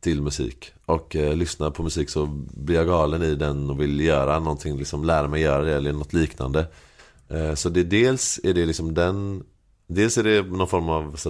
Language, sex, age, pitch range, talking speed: Swedish, male, 30-49, 75-95 Hz, 210 wpm